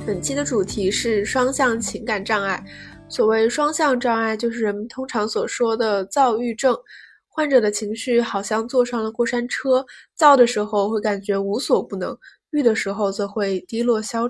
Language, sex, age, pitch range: Chinese, female, 10-29, 215-260 Hz